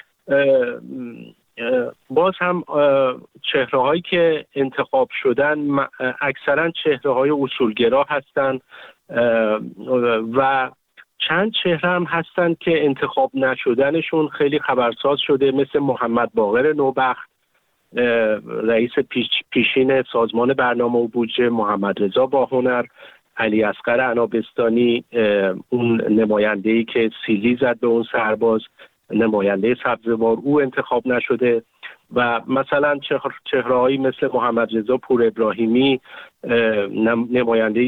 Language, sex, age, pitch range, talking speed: Persian, male, 50-69, 115-145 Hz, 100 wpm